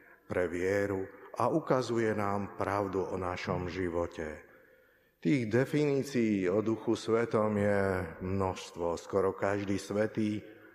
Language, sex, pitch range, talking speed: Slovak, male, 100-115 Hz, 105 wpm